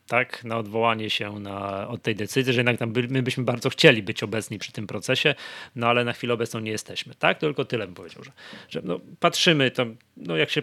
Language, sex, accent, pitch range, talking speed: Polish, male, native, 115-150 Hz, 235 wpm